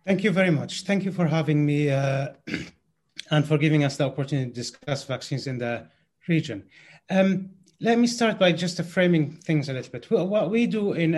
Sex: male